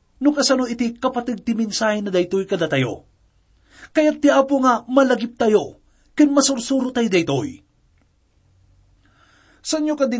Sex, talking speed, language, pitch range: male, 125 wpm, English, 165-250 Hz